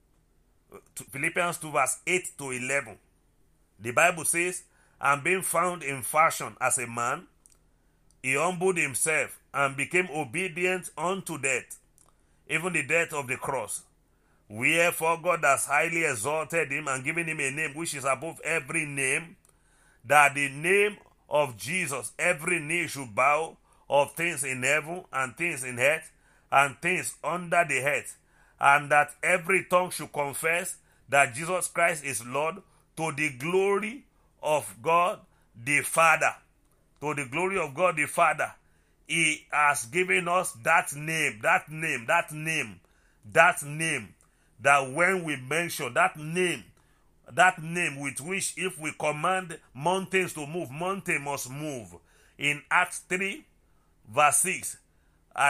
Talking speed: 145 wpm